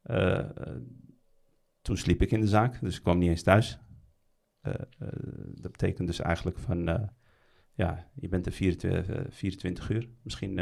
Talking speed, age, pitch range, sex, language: 165 wpm, 40-59, 85-110 Hz, male, Dutch